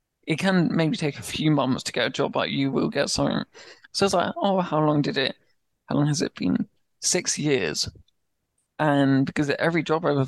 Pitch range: 140-155 Hz